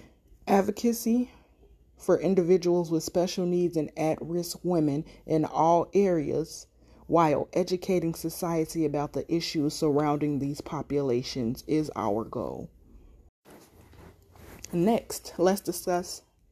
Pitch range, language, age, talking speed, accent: 150-185 Hz, English, 30-49, 100 wpm, American